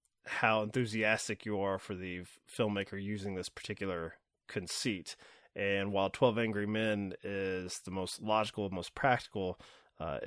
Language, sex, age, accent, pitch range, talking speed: English, male, 20-39, American, 100-125 Hz, 135 wpm